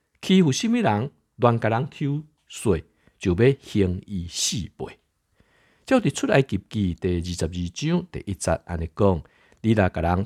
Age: 50-69